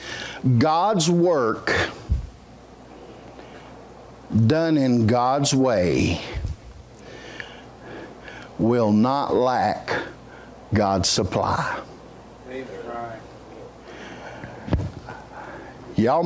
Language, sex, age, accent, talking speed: English, male, 60-79, American, 45 wpm